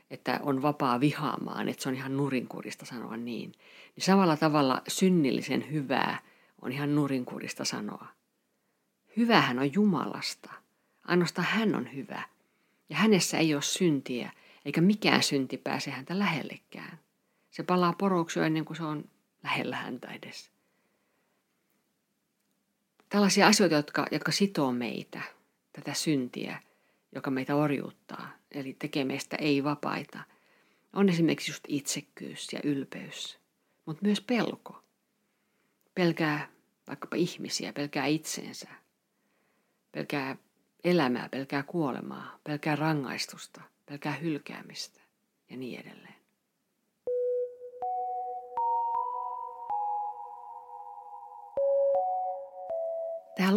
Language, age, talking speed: Finnish, 50-69, 100 wpm